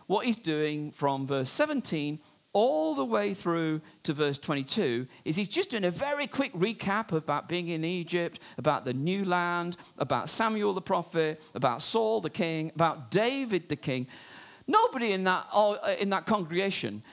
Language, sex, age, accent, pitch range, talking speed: English, male, 50-69, British, 135-185 Hz, 165 wpm